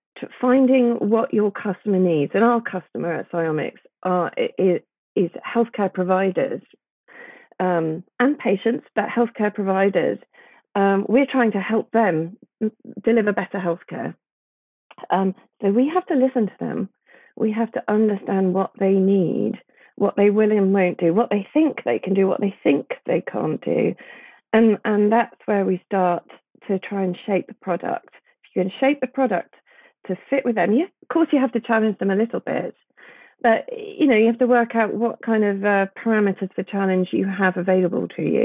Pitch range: 185-235 Hz